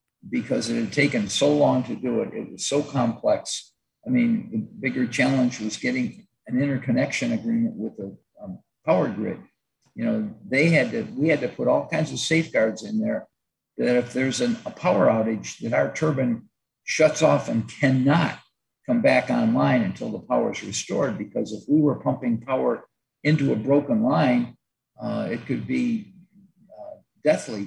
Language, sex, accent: English, male, American